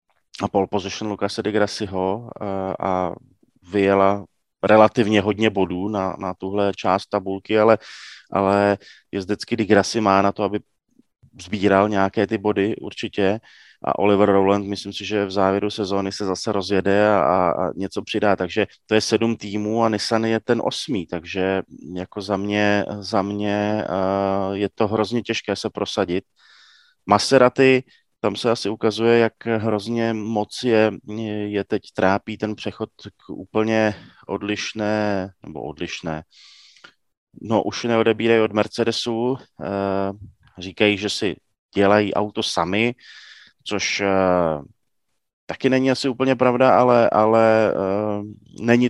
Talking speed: 130 wpm